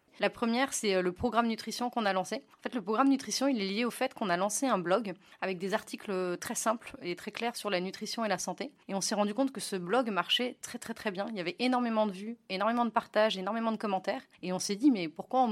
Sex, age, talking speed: female, 30-49, 270 wpm